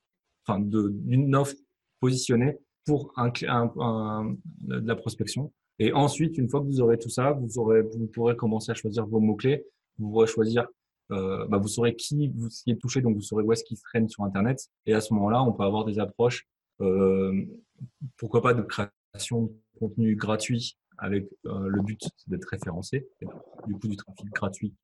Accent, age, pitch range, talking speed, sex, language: French, 20-39, 105-120 Hz, 195 wpm, male, French